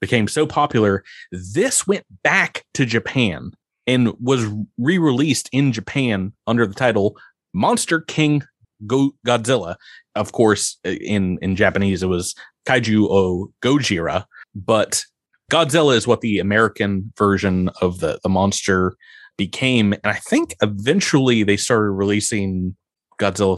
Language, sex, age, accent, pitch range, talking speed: English, male, 30-49, American, 95-125 Hz, 125 wpm